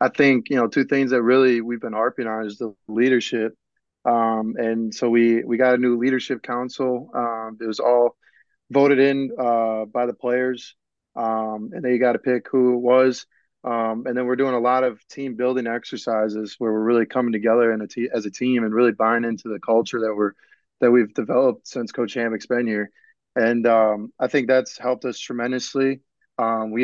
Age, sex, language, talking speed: 20-39, male, English, 205 wpm